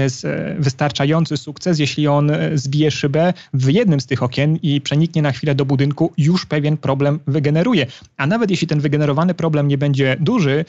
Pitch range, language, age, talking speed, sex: 135-170 Hz, Polish, 30-49, 180 wpm, male